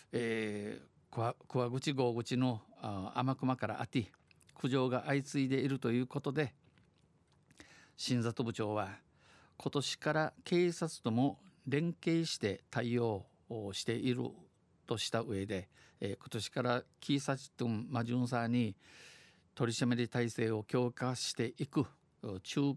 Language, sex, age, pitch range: Japanese, male, 50-69, 110-135 Hz